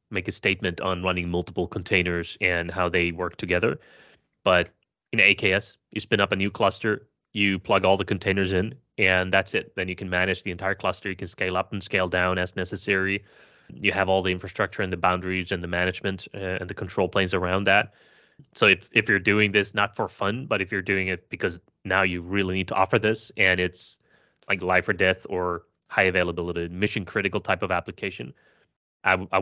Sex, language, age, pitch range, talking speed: male, English, 20-39, 90-95 Hz, 200 wpm